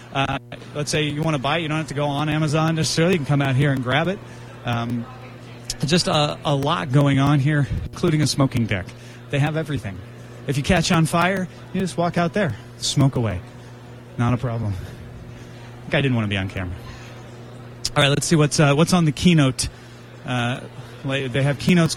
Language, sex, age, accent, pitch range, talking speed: English, male, 30-49, American, 120-150 Hz, 210 wpm